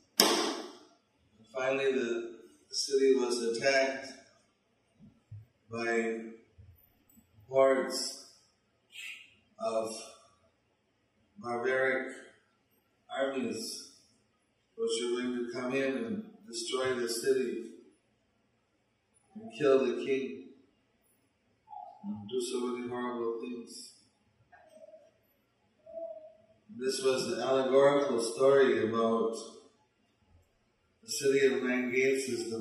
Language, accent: English, American